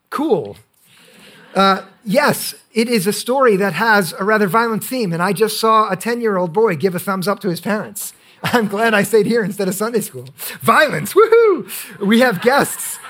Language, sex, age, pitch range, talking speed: English, male, 50-69, 185-235 Hz, 190 wpm